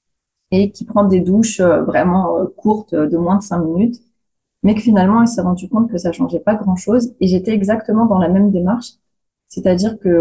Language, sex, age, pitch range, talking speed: French, female, 30-49, 175-220 Hz, 195 wpm